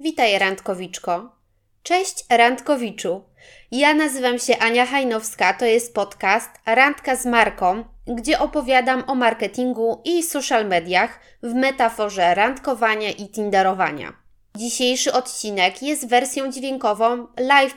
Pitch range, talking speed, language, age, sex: 205-255 Hz, 110 wpm, Polish, 20-39, female